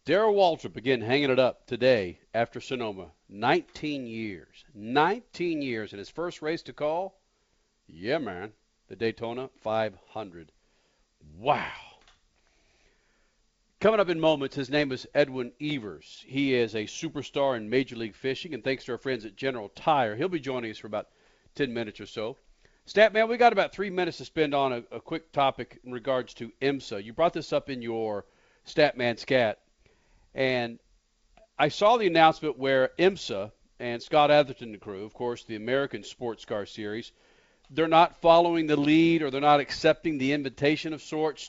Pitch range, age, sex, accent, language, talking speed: 125-155 Hz, 50-69, male, American, English, 170 wpm